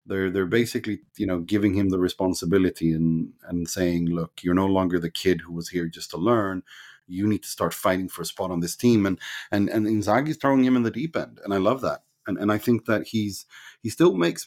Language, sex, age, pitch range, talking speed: English, male, 30-49, 85-110 Hz, 240 wpm